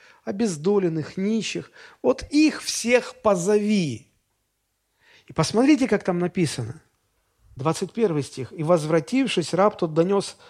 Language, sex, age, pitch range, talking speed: Russian, male, 40-59, 130-200 Hz, 105 wpm